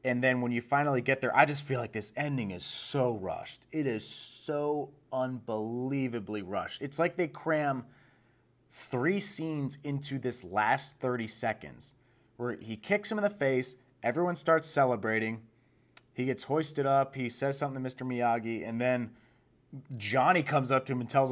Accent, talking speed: American, 170 wpm